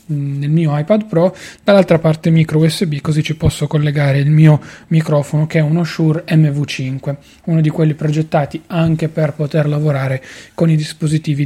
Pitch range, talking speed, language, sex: 150-175 Hz, 160 wpm, Italian, male